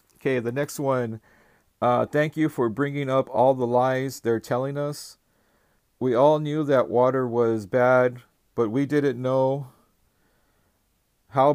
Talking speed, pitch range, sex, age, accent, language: 145 wpm, 115-140 Hz, male, 40-59, American, English